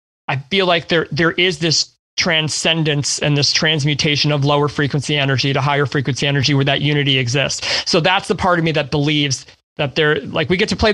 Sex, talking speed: male, 210 wpm